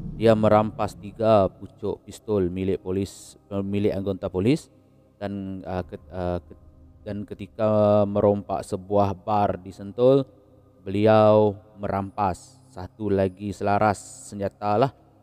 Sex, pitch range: male, 95-105 Hz